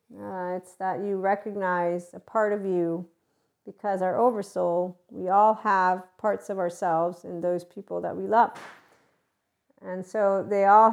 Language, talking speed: English, 155 wpm